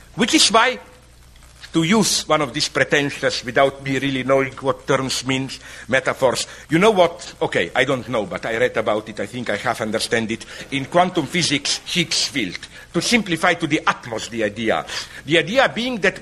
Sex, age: male, 60-79